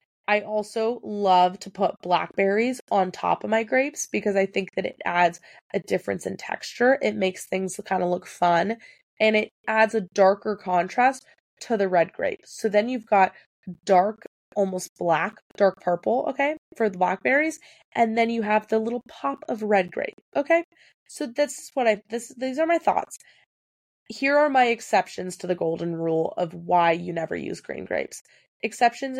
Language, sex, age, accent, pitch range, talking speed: English, female, 20-39, American, 185-265 Hz, 180 wpm